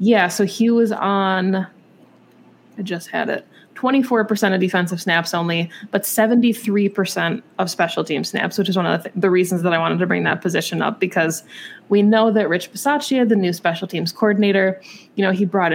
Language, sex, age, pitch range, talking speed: English, female, 20-39, 170-210 Hz, 195 wpm